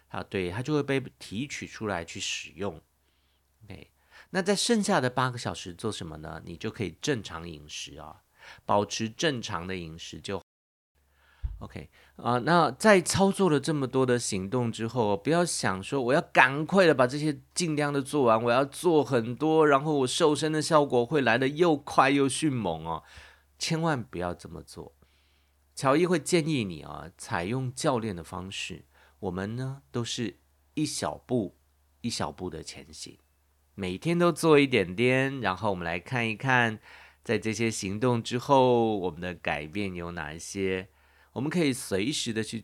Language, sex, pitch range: Chinese, male, 85-130 Hz